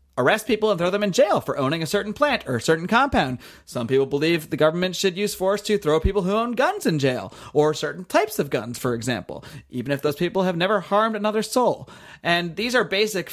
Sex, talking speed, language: male, 235 wpm, English